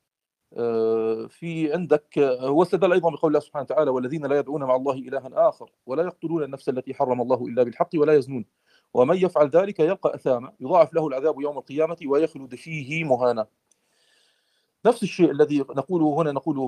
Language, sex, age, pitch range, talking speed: Arabic, male, 40-59, 130-165 Hz, 160 wpm